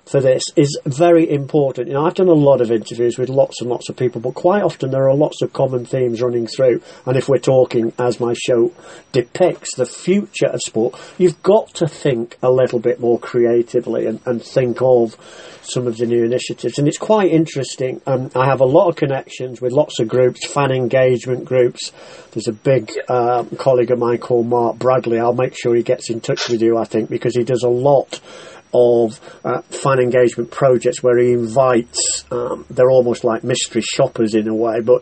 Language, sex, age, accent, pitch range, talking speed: English, male, 40-59, British, 120-135 Hz, 210 wpm